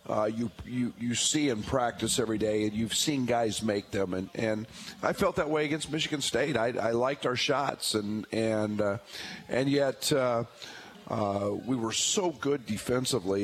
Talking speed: 185 wpm